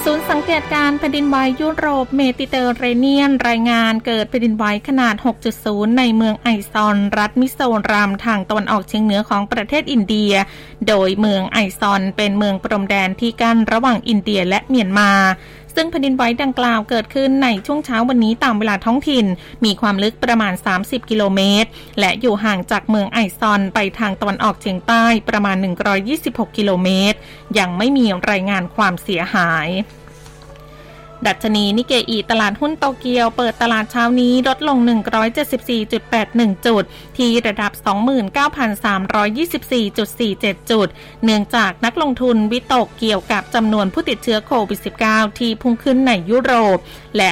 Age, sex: 20-39, female